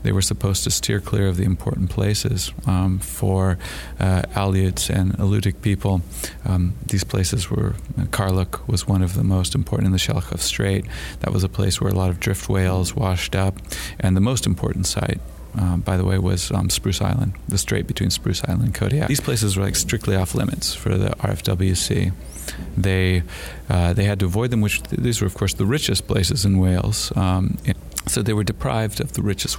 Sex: male